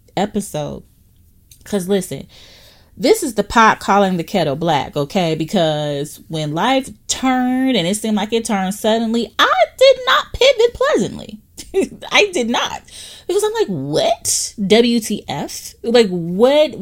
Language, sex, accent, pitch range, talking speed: English, female, American, 155-215 Hz, 135 wpm